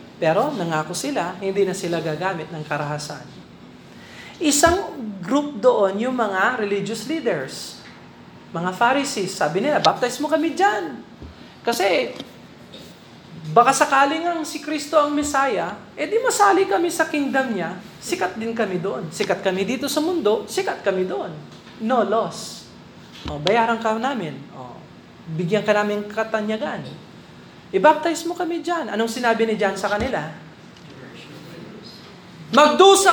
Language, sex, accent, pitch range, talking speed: Filipino, male, native, 205-300 Hz, 130 wpm